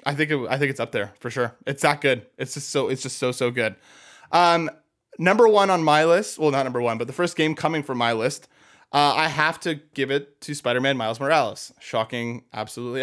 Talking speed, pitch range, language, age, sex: 240 wpm, 120-150 Hz, English, 20-39, male